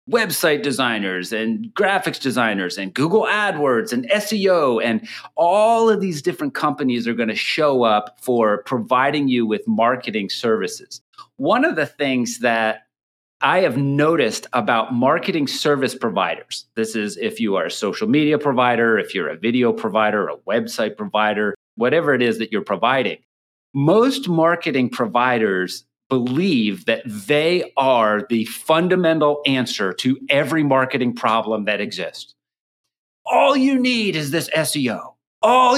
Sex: male